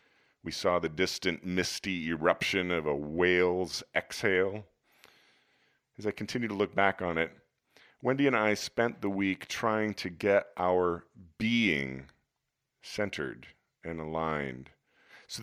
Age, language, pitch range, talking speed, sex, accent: 40-59, English, 80-100 Hz, 130 wpm, male, American